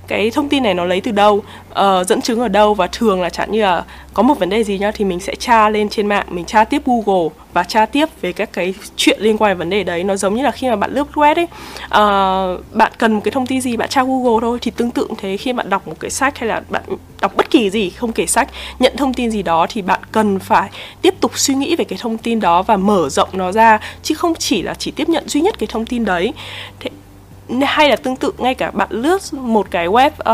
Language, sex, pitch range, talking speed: Vietnamese, female, 195-260 Hz, 270 wpm